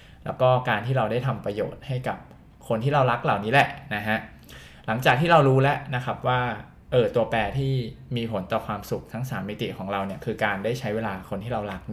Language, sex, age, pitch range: Thai, male, 20-39, 105-135 Hz